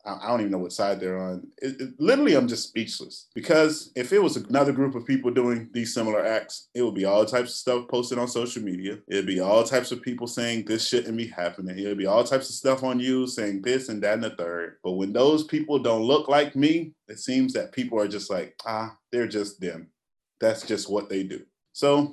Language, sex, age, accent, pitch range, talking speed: English, male, 20-39, American, 105-130 Hz, 240 wpm